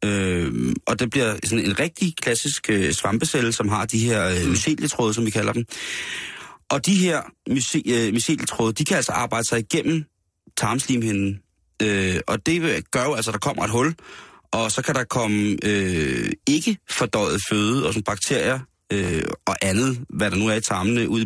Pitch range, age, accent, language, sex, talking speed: 100-130 Hz, 30-49, native, Danish, male, 165 wpm